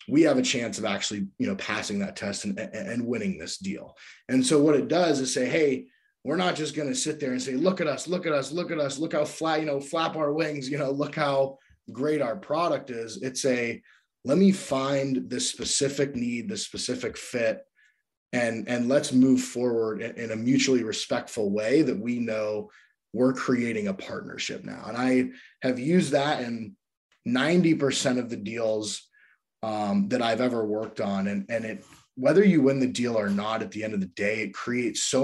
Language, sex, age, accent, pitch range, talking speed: English, male, 20-39, American, 115-155 Hz, 210 wpm